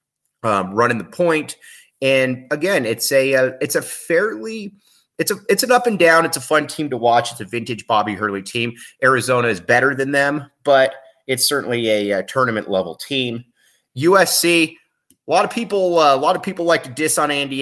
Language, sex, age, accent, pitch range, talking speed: English, male, 30-49, American, 110-140 Hz, 200 wpm